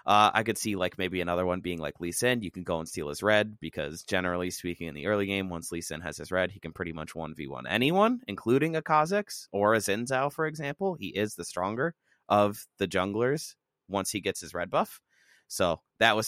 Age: 30-49